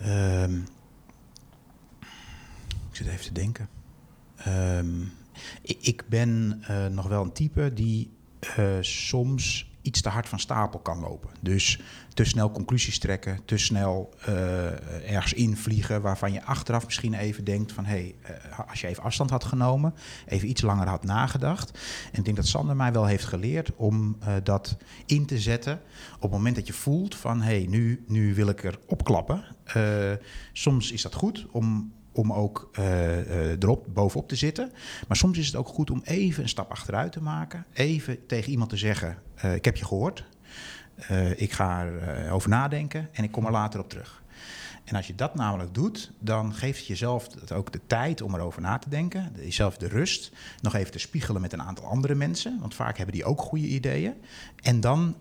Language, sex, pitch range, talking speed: Dutch, male, 95-125 Hz, 190 wpm